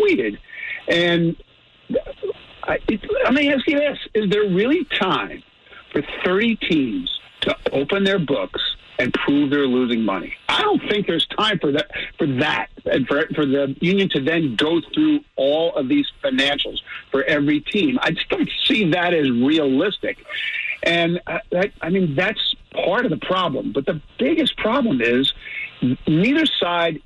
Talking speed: 160 wpm